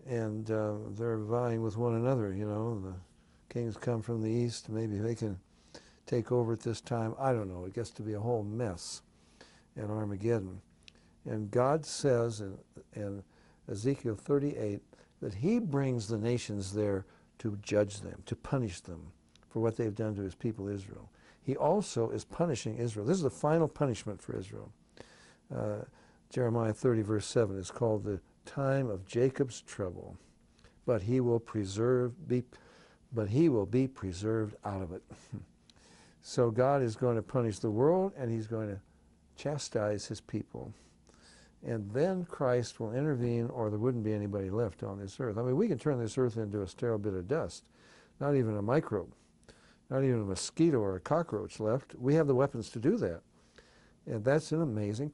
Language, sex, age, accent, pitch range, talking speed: English, male, 60-79, American, 100-125 Hz, 180 wpm